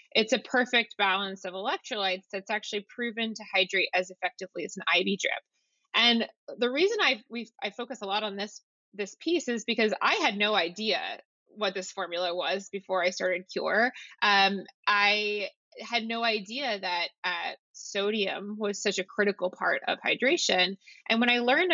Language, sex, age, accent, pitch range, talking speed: English, female, 20-39, American, 190-225 Hz, 170 wpm